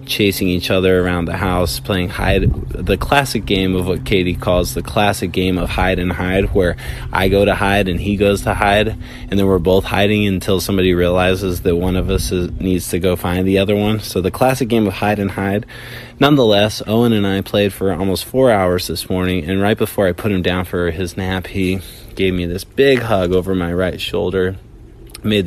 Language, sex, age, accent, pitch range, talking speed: English, male, 20-39, American, 90-100 Hz, 215 wpm